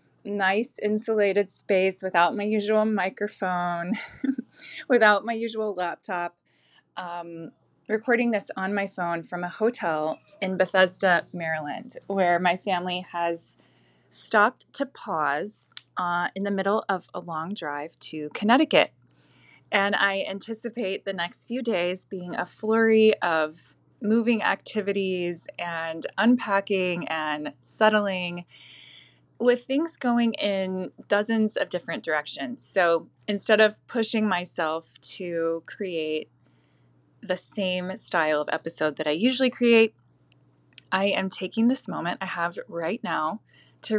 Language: English